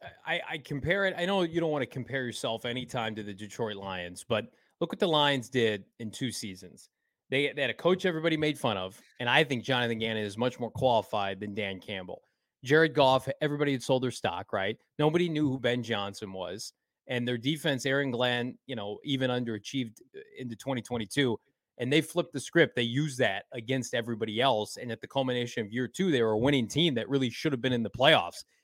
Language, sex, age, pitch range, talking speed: English, male, 20-39, 115-150 Hz, 215 wpm